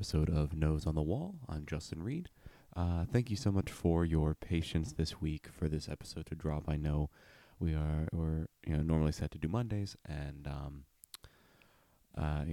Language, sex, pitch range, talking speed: English, male, 75-85 Hz, 170 wpm